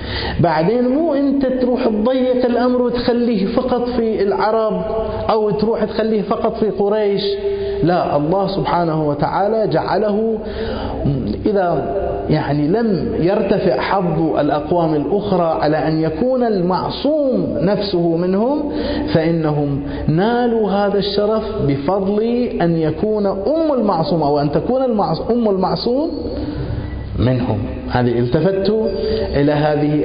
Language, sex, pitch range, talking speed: Arabic, male, 140-215 Hz, 105 wpm